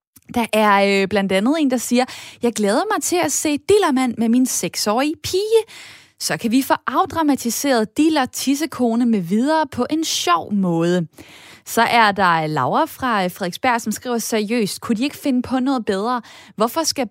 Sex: female